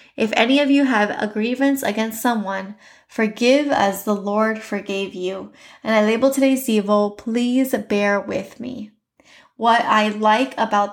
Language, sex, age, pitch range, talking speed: English, female, 10-29, 205-240 Hz, 155 wpm